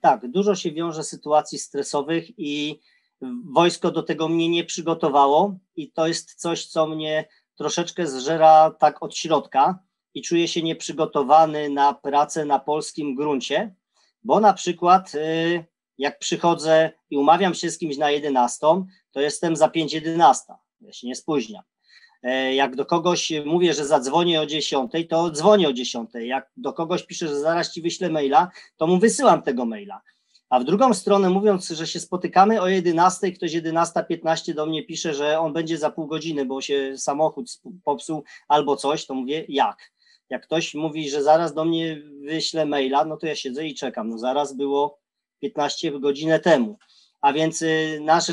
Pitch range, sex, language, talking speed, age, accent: 150-175 Hz, male, Polish, 170 wpm, 40-59, native